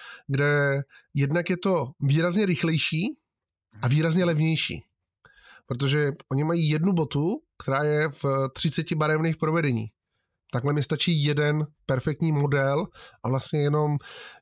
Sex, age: male, 20-39